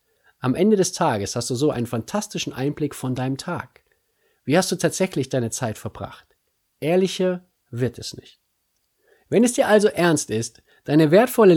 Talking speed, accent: 165 wpm, German